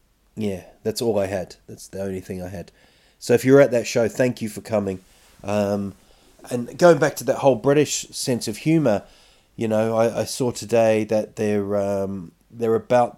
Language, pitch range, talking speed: English, 100-125 Hz, 195 wpm